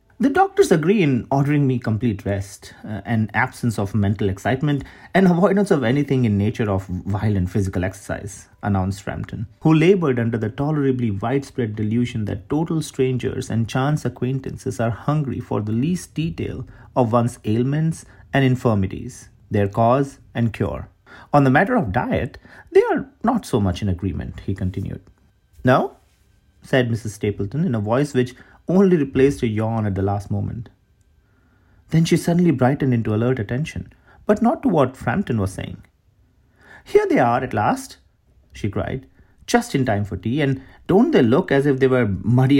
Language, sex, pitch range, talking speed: Hindi, male, 100-135 Hz, 170 wpm